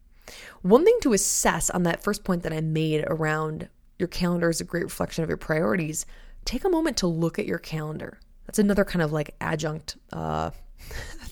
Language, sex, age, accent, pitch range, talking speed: English, female, 20-39, American, 155-205 Hz, 190 wpm